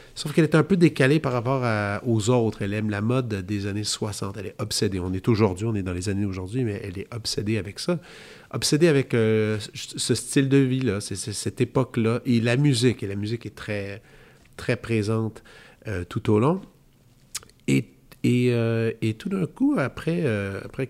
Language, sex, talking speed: French, male, 205 wpm